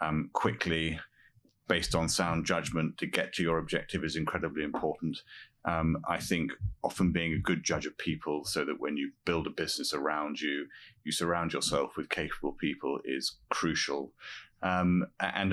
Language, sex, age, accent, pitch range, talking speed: English, male, 30-49, British, 80-95 Hz, 165 wpm